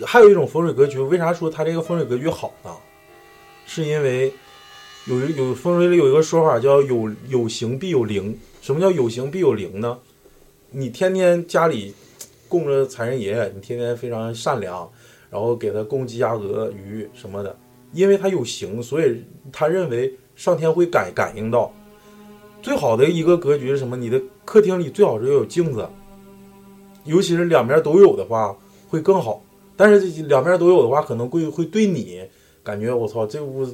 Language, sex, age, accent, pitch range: Chinese, male, 20-39, native, 120-175 Hz